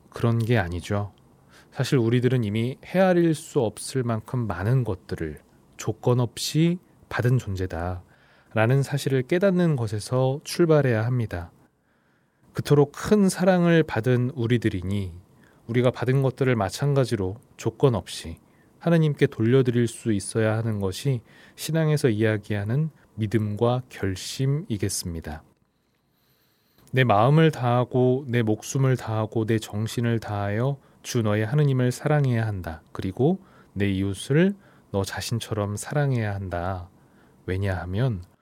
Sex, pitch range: male, 100-135 Hz